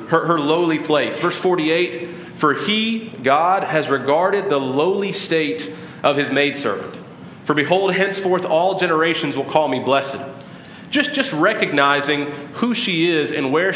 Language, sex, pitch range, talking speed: English, male, 140-170 Hz, 150 wpm